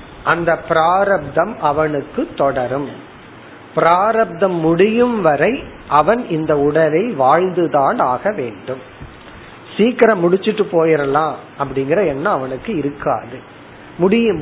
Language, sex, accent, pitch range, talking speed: Tamil, male, native, 150-200 Hz, 55 wpm